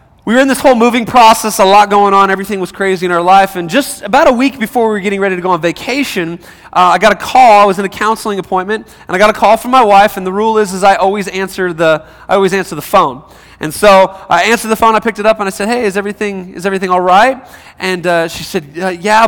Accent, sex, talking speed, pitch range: American, male, 275 wpm, 180-220 Hz